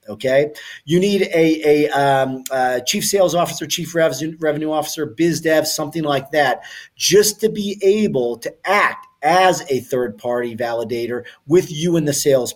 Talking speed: 165 wpm